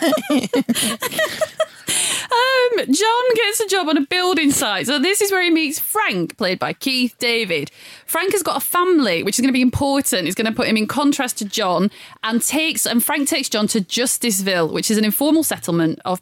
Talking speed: 200 wpm